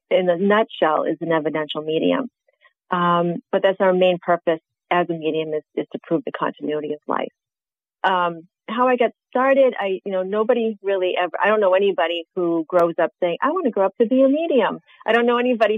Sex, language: female, English